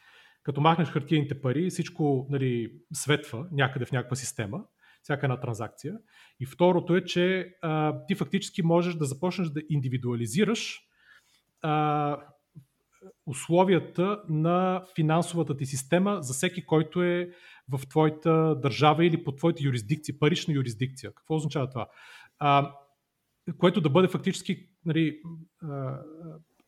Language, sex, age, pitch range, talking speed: Bulgarian, male, 30-49, 135-170 Hz, 125 wpm